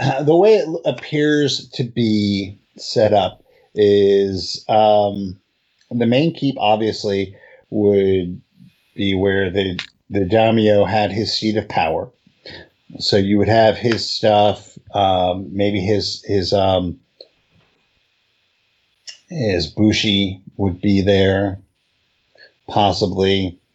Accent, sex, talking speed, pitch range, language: American, male, 110 wpm, 95-110 Hz, English